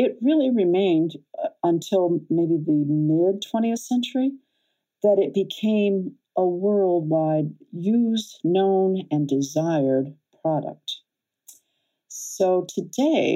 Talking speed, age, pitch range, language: 95 wpm, 50-69, 150-225 Hz, English